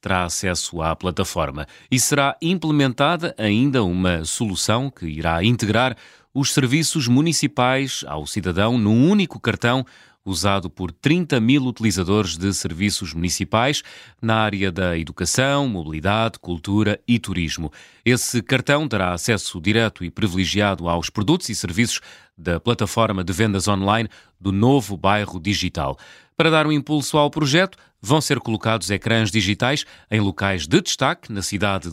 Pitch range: 95-130 Hz